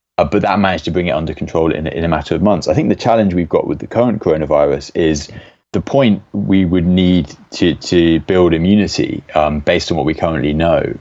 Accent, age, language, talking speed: British, 30-49, English, 230 wpm